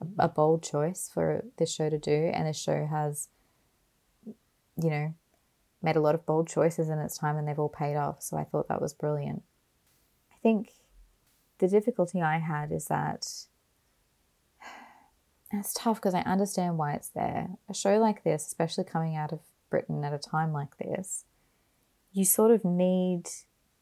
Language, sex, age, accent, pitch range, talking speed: English, female, 20-39, Australian, 150-185 Hz, 170 wpm